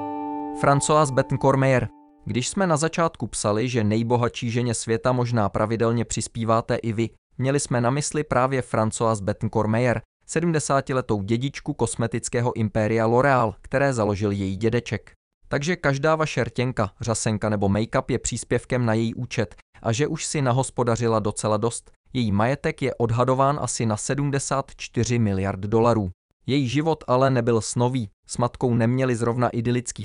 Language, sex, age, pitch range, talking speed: English, male, 20-39, 110-135 Hz, 135 wpm